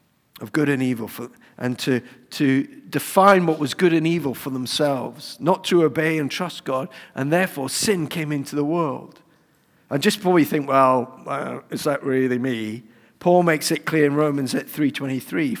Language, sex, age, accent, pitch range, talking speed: English, male, 50-69, British, 145-200 Hz, 185 wpm